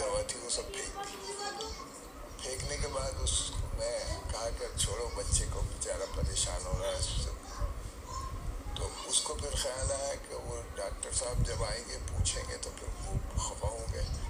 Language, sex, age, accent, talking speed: English, male, 50-69, Indian, 140 wpm